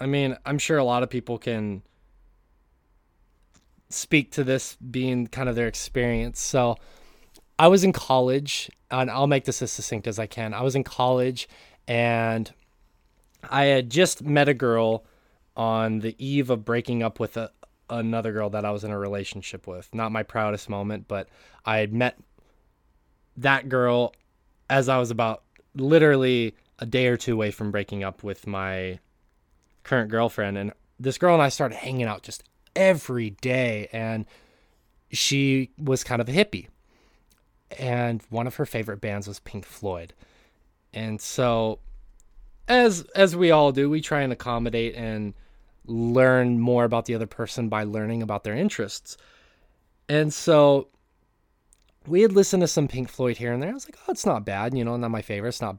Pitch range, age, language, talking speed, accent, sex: 110-135 Hz, 20-39, English, 175 wpm, American, male